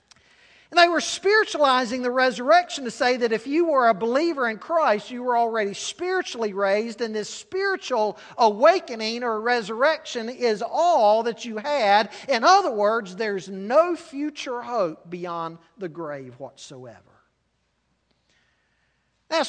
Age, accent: 50-69, American